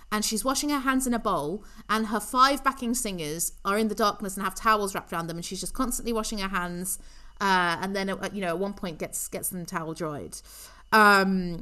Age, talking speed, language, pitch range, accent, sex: 30-49, 230 wpm, English, 185-225 Hz, British, female